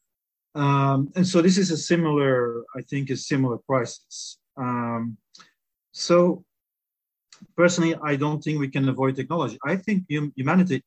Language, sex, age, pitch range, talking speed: English, male, 40-59, 130-155 Hz, 140 wpm